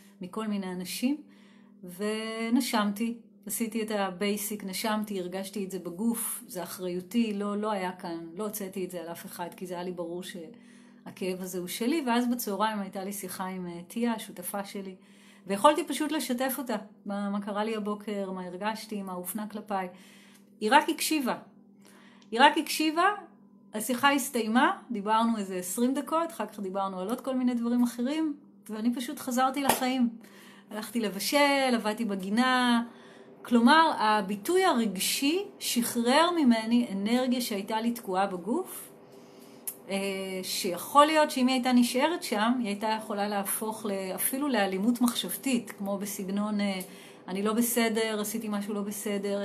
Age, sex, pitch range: 30-49, female, 195-240 Hz